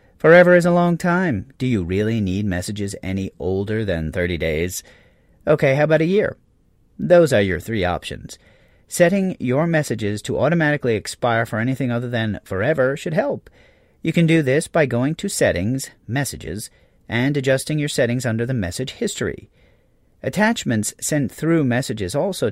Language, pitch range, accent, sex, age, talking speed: English, 110-155 Hz, American, male, 40-59, 160 wpm